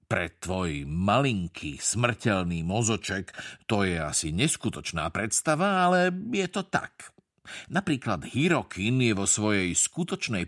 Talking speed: 115 wpm